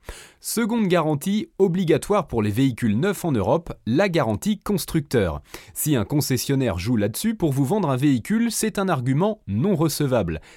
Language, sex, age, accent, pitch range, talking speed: French, male, 30-49, French, 120-185 Hz, 155 wpm